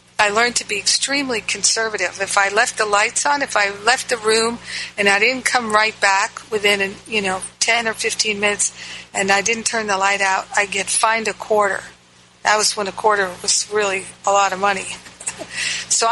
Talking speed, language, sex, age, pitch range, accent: 205 wpm, English, female, 50-69, 195-230 Hz, American